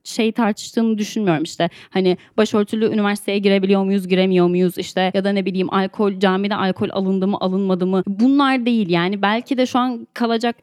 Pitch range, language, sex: 195-270 Hz, Turkish, female